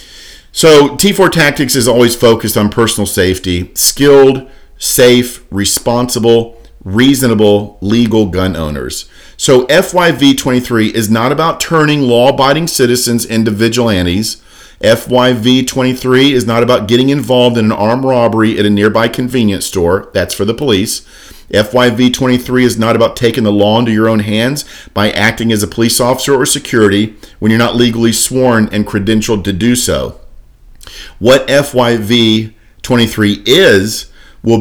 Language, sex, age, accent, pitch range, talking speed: English, male, 50-69, American, 105-125 Hz, 135 wpm